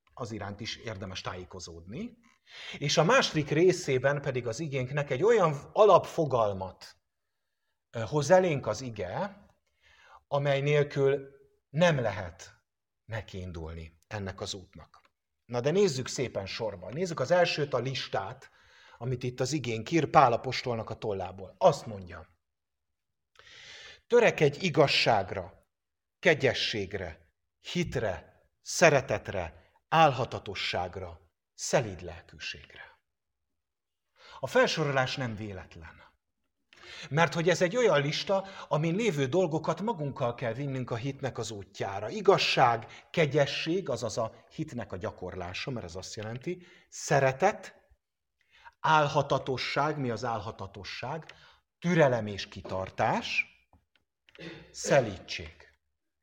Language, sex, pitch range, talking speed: English, male, 100-155 Hz, 100 wpm